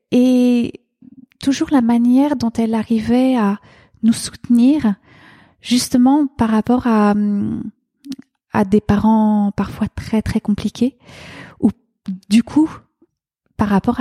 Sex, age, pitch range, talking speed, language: female, 30-49, 205-245 Hz, 110 wpm, French